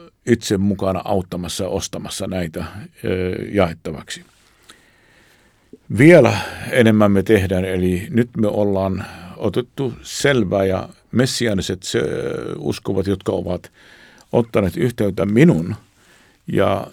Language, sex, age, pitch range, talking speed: Finnish, male, 50-69, 95-110 Hz, 100 wpm